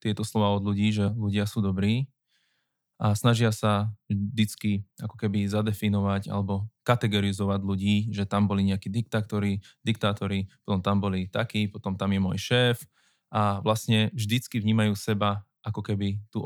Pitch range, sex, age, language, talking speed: 105-125 Hz, male, 20-39, Slovak, 140 wpm